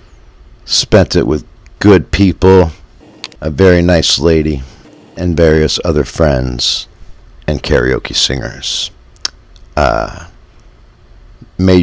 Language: English